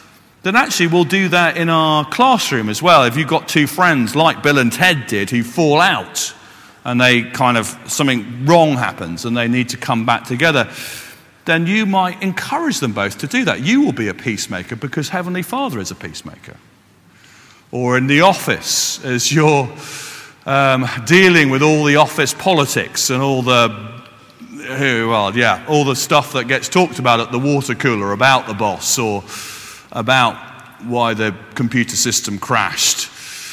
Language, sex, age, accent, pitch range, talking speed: English, male, 40-59, British, 115-155 Hz, 170 wpm